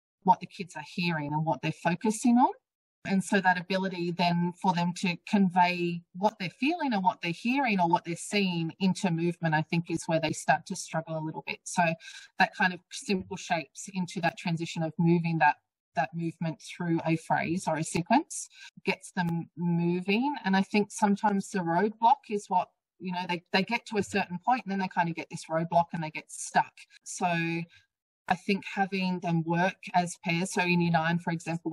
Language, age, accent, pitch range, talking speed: English, 30-49, Australian, 165-195 Hz, 205 wpm